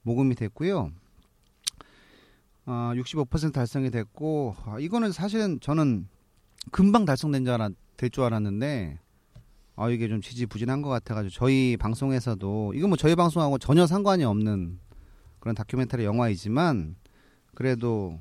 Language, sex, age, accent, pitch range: Korean, male, 30-49, native, 105-140 Hz